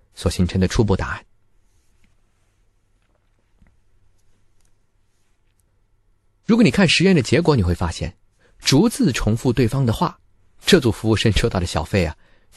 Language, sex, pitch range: Chinese, male, 95-130 Hz